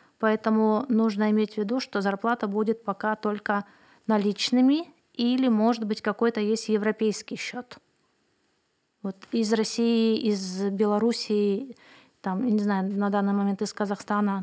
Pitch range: 205-235 Hz